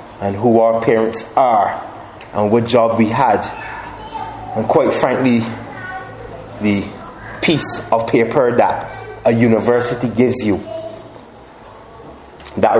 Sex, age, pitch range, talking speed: male, 30-49, 120-190 Hz, 110 wpm